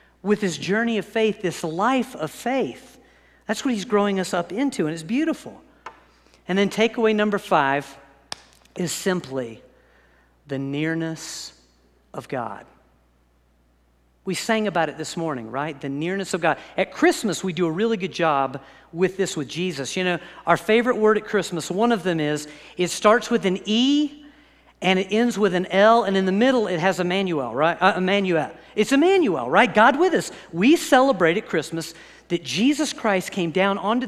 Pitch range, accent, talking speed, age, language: 165-230 Hz, American, 175 wpm, 50-69, English